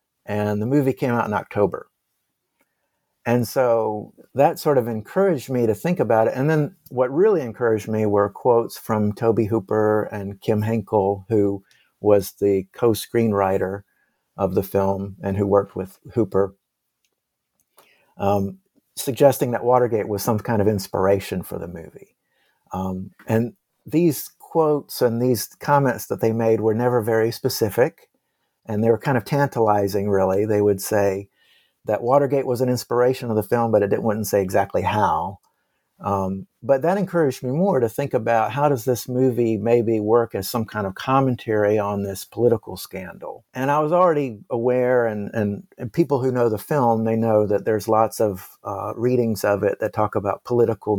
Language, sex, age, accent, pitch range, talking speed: English, male, 50-69, American, 100-125 Hz, 170 wpm